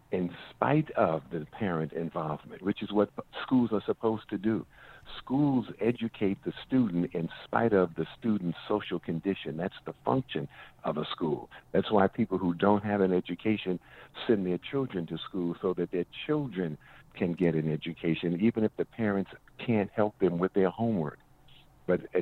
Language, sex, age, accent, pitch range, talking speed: English, male, 50-69, American, 85-110 Hz, 170 wpm